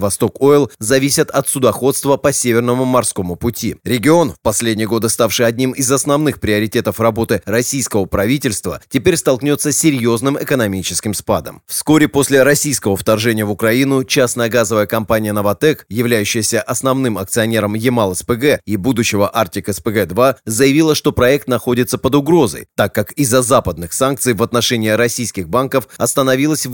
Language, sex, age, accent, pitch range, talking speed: Russian, male, 30-49, native, 110-140 Hz, 135 wpm